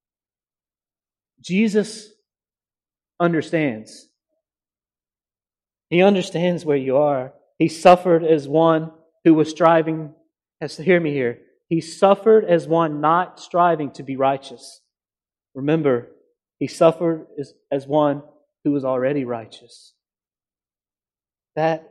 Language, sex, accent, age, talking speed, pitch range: English, male, American, 30-49, 100 wpm, 125-175 Hz